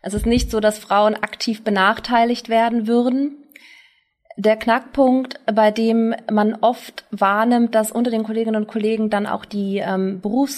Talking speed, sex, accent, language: 160 wpm, female, German, German